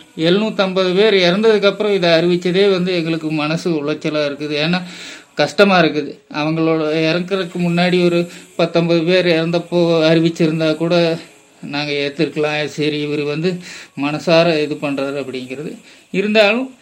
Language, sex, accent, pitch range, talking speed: Tamil, male, native, 155-200 Hz, 115 wpm